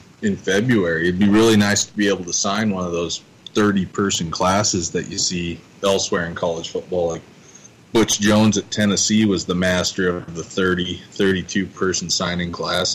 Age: 20-39